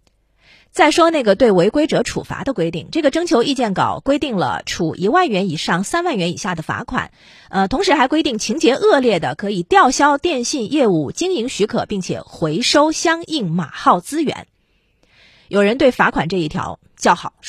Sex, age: female, 30-49